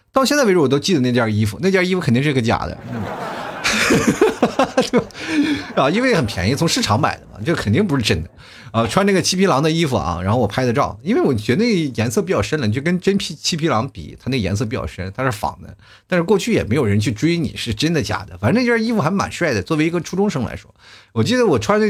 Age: 30-49